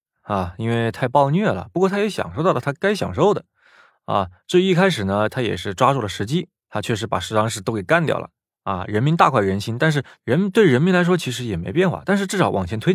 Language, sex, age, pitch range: Chinese, male, 20-39, 95-150 Hz